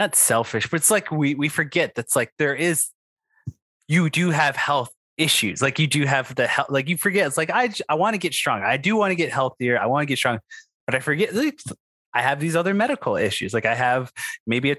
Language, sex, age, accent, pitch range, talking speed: English, male, 20-39, American, 115-155 Hz, 240 wpm